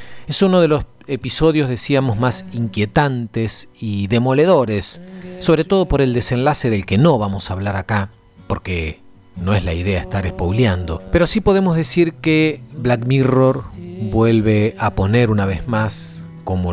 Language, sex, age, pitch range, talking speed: Spanish, male, 40-59, 100-135 Hz, 155 wpm